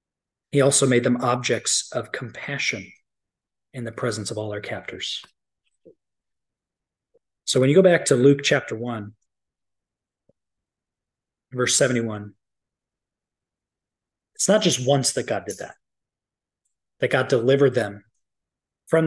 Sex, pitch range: male, 120-160 Hz